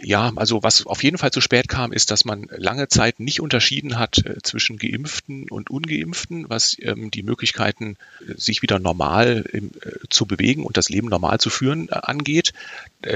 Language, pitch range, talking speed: German, 100-125 Hz, 165 wpm